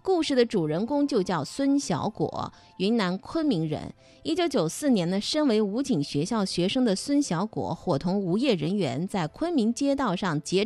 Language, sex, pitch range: Chinese, female, 170-270 Hz